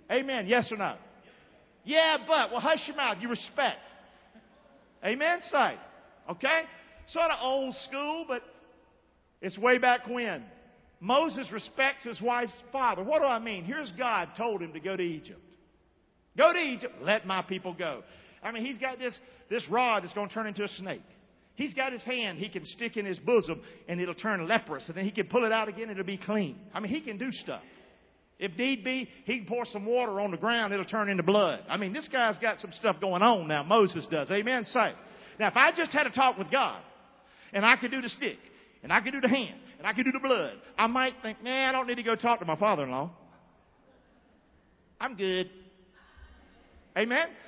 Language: English